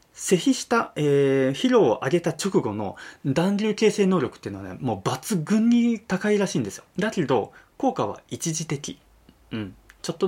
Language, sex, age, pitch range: Japanese, male, 20-39, 130-215 Hz